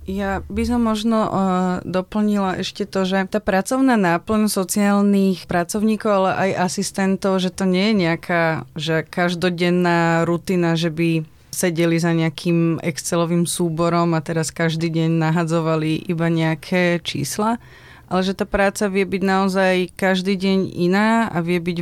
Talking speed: 140 wpm